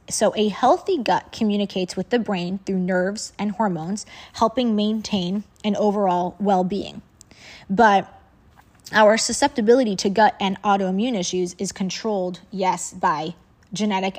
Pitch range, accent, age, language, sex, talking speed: 185-220 Hz, American, 20-39, English, female, 130 wpm